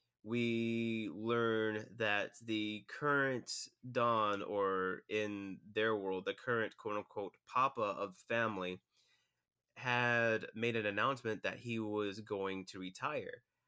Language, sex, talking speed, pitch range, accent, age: English, male, 115 wpm, 100-115 Hz, American, 20-39